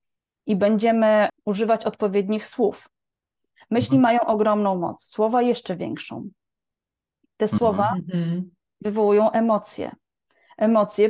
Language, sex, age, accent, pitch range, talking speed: Polish, female, 20-39, native, 200-255 Hz, 90 wpm